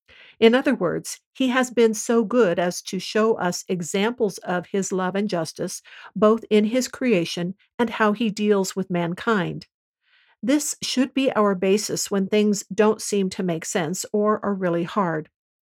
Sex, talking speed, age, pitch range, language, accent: female, 170 wpm, 50-69, 180-220 Hz, English, American